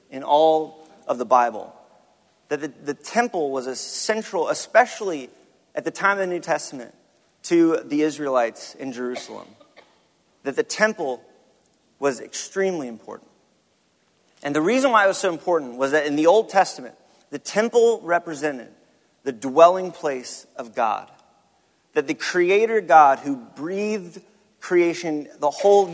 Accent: American